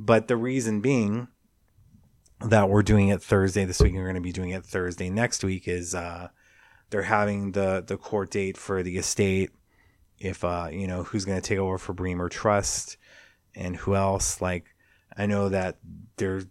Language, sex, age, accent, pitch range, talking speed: English, male, 30-49, American, 90-105 Hz, 190 wpm